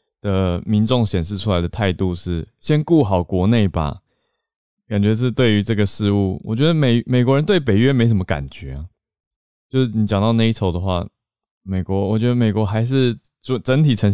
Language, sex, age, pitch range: Chinese, male, 20-39, 85-110 Hz